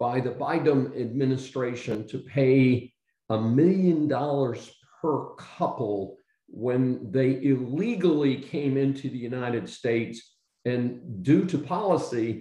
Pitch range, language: 115-145 Hz, English